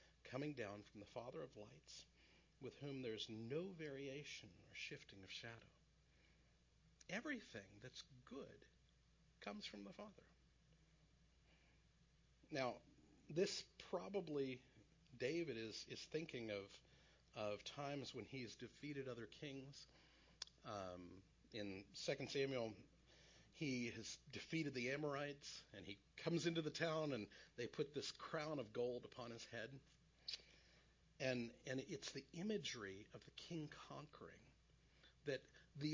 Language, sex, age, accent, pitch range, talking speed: English, male, 50-69, American, 110-150 Hz, 125 wpm